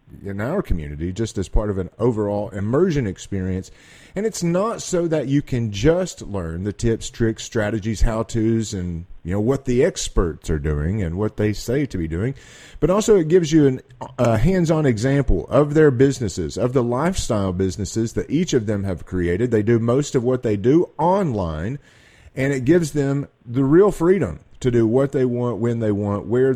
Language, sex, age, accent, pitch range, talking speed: English, male, 40-59, American, 100-145 Hz, 195 wpm